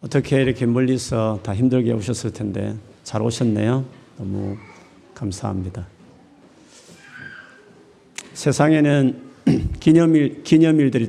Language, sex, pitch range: Korean, male, 110-130 Hz